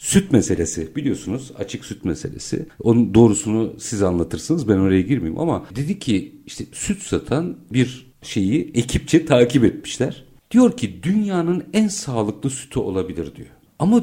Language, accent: Turkish, native